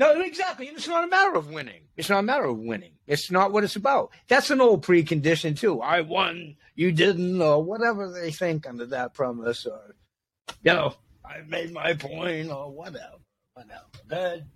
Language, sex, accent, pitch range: Chinese, male, American, 135-200 Hz